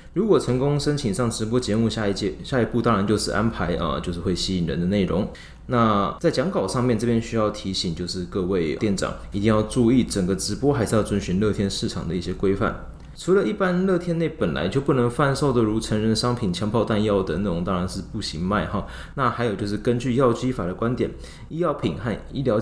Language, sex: Chinese, male